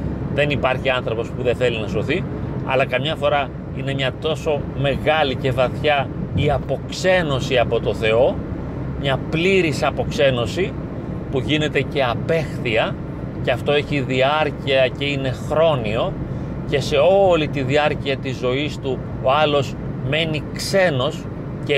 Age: 30-49